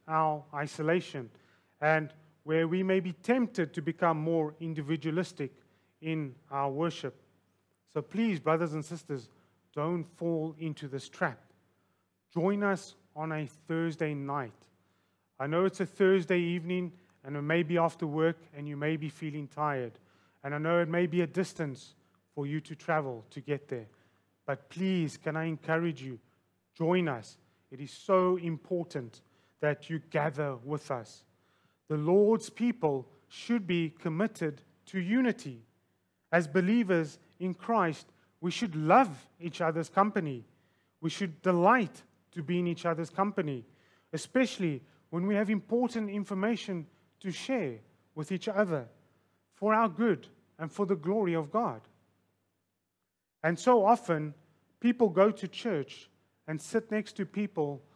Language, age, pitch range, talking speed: English, 30-49, 135-180 Hz, 145 wpm